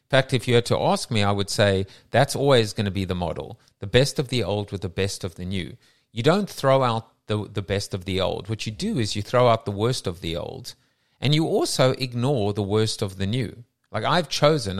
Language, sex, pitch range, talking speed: English, male, 100-125 Hz, 255 wpm